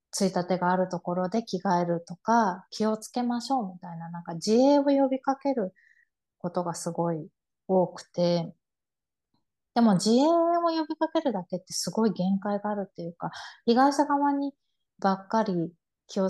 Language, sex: Japanese, female